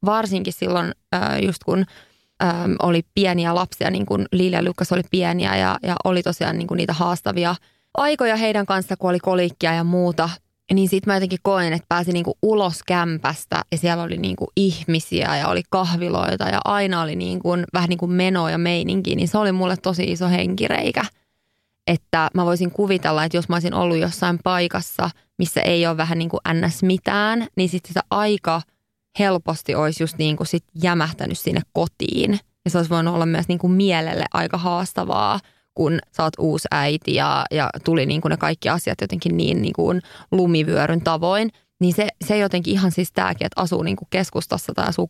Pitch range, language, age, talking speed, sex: 170-190 Hz, Finnish, 20-39, 175 wpm, female